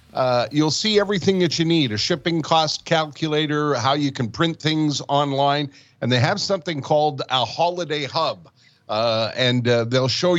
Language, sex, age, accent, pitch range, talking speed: English, male, 50-69, American, 125-160 Hz, 175 wpm